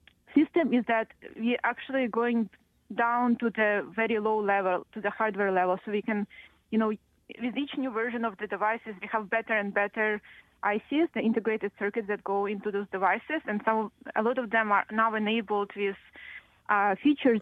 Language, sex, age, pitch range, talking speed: English, female, 20-39, 200-225 Hz, 185 wpm